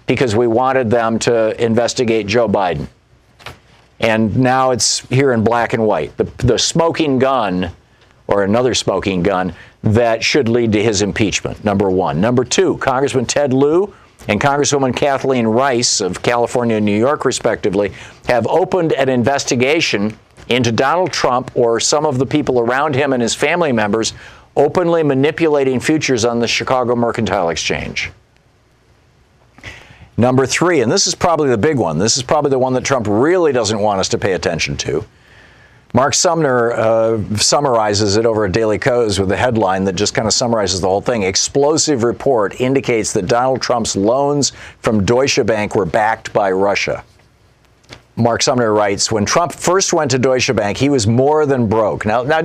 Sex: male